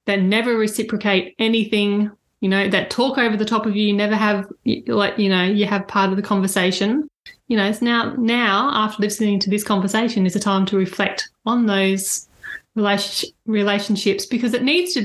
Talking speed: 190 wpm